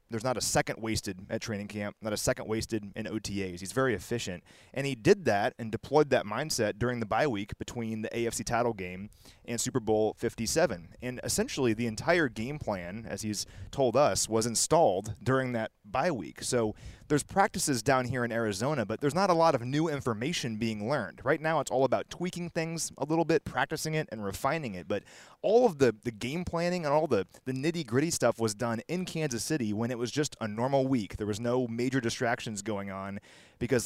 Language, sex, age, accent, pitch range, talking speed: English, male, 30-49, American, 110-135 Hz, 215 wpm